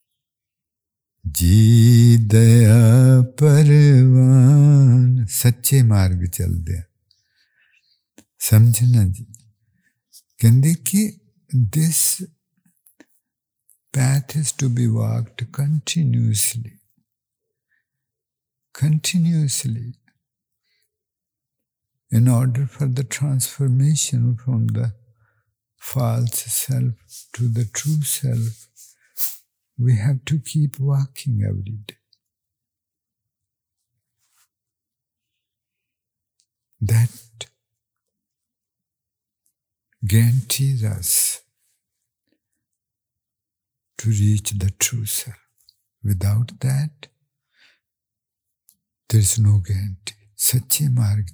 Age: 60-79